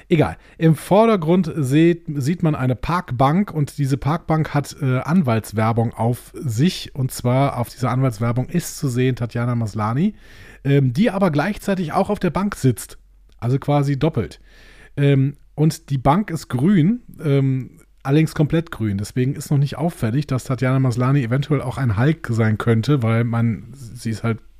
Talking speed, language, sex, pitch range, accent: 165 wpm, German, male, 120-155 Hz, German